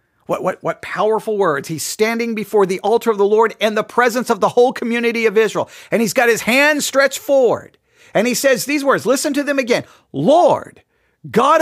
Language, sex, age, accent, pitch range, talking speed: English, male, 40-59, American, 180-270 Hz, 205 wpm